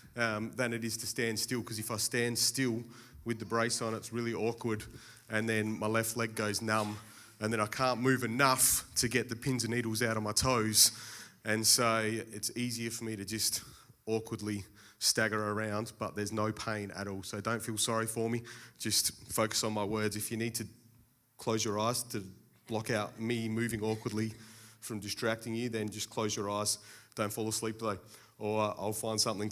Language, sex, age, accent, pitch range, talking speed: English, male, 30-49, Australian, 110-120 Hz, 200 wpm